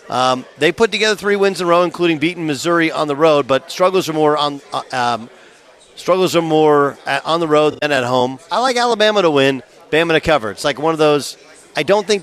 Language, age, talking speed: English, 40-59, 230 wpm